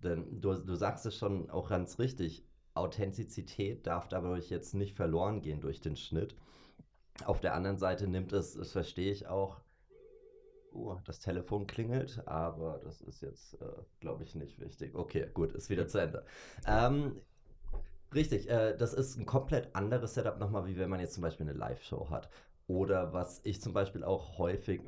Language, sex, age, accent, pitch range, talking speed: German, male, 30-49, German, 85-105 Hz, 175 wpm